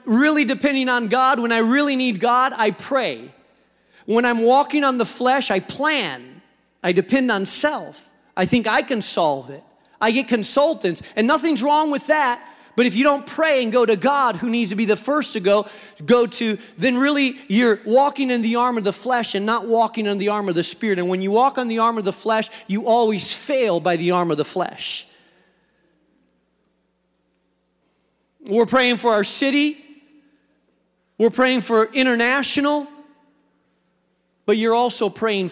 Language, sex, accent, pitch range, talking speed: English, male, American, 215-270 Hz, 180 wpm